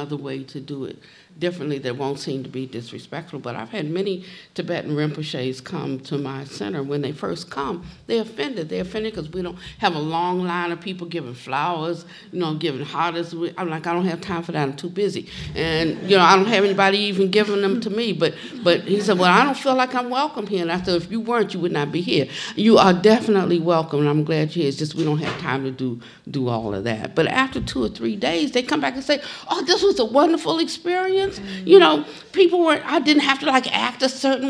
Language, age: English, 60-79